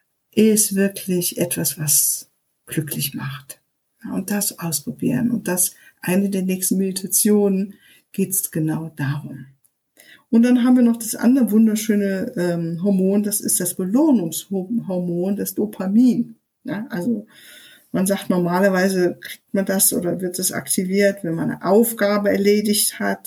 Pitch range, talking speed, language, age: 185-230 Hz, 135 wpm, German, 50-69